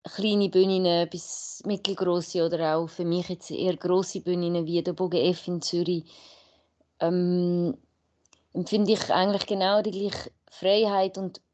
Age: 20-39